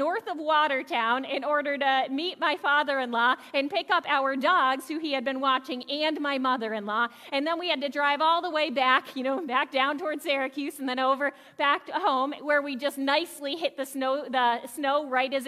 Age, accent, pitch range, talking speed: 30-49, American, 255-315 Hz, 210 wpm